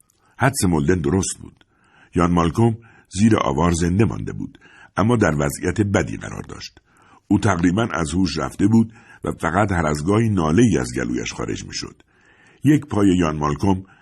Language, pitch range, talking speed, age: Persian, 85-110 Hz, 165 wpm, 60-79